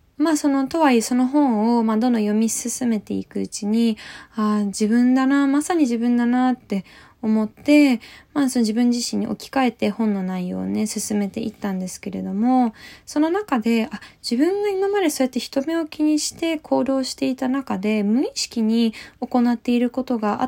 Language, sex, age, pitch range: Japanese, female, 20-39, 205-270 Hz